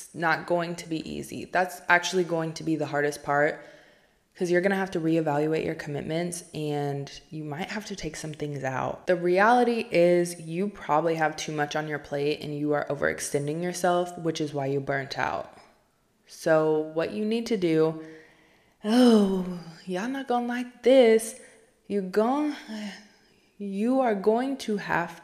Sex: female